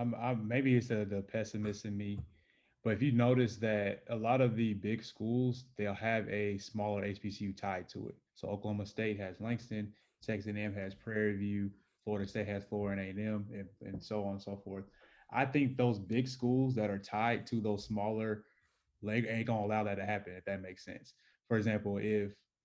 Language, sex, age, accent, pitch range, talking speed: English, male, 20-39, American, 105-120 Hz, 195 wpm